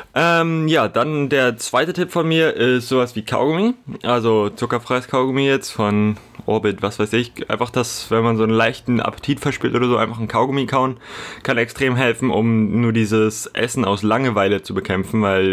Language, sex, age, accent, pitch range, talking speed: German, male, 20-39, German, 110-135 Hz, 185 wpm